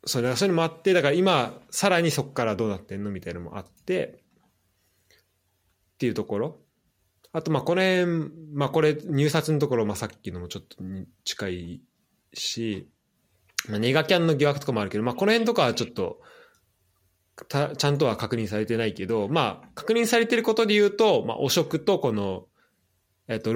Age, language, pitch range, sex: 20-39, Japanese, 95-145 Hz, male